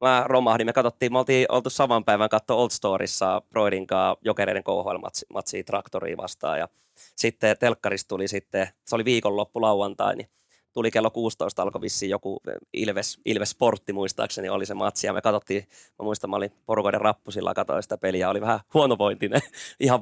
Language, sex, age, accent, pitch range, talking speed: Finnish, male, 20-39, native, 105-125 Hz, 160 wpm